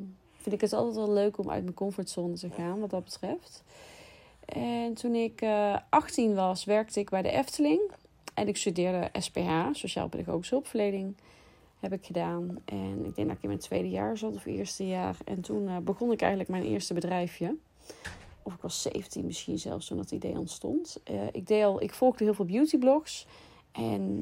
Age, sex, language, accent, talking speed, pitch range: 30-49, female, Dutch, Dutch, 190 wpm, 180-225 Hz